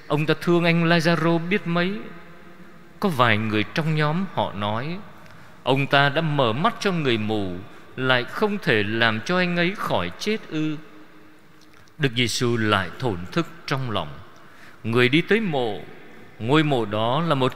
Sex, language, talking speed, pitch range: male, Vietnamese, 165 wpm, 115-165 Hz